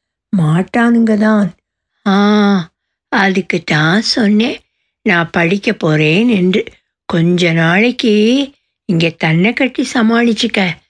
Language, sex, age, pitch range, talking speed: Tamil, female, 60-79, 170-230 Hz, 85 wpm